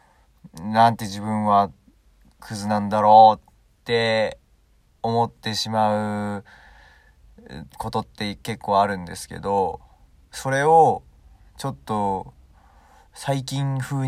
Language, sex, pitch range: Japanese, male, 95-130 Hz